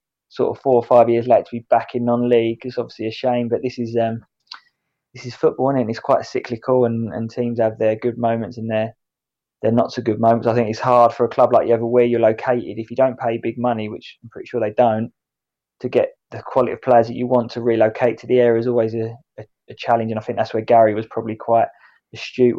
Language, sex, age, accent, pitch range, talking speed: English, male, 20-39, British, 110-120 Hz, 255 wpm